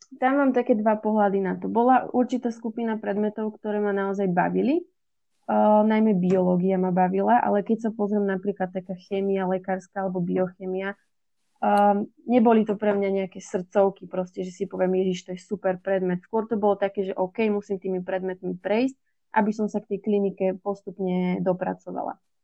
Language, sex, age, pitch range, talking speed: Slovak, female, 20-39, 185-215 Hz, 170 wpm